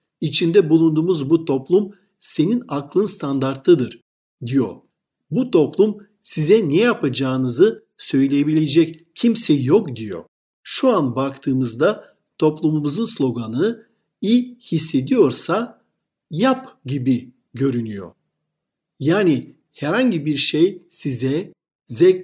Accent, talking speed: native, 90 wpm